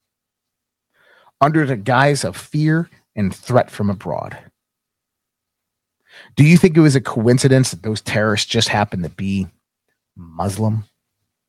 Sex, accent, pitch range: male, American, 105-150 Hz